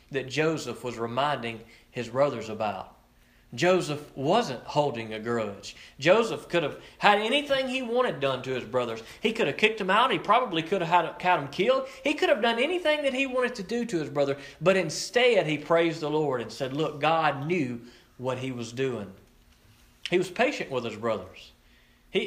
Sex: male